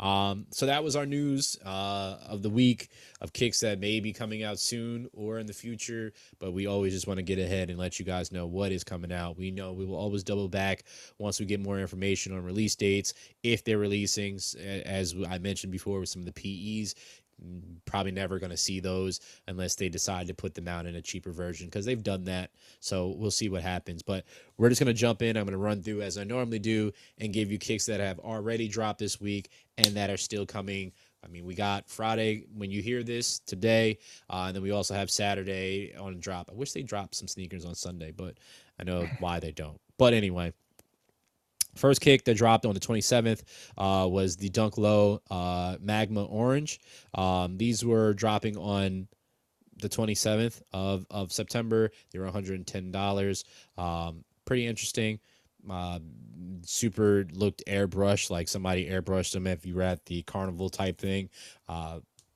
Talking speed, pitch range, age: 200 wpm, 95-110 Hz, 20-39